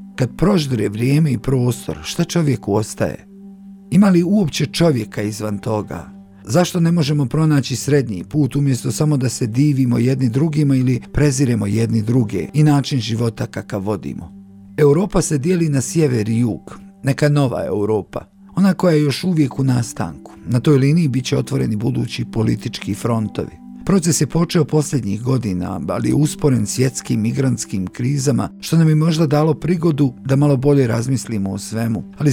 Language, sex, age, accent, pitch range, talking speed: Croatian, male, 50-69, native, 110-150 Hz, 160 wpm